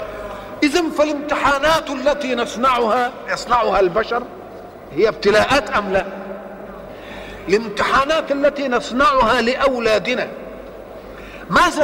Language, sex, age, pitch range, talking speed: Arabic, male, 50-69, 230-290 Hz, 75 wpm